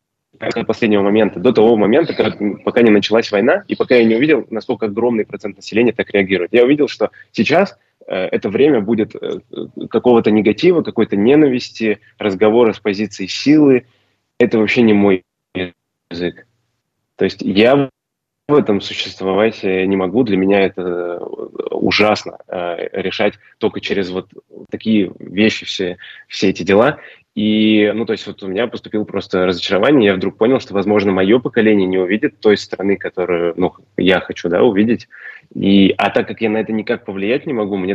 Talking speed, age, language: 170 wpm, 20-39, Russian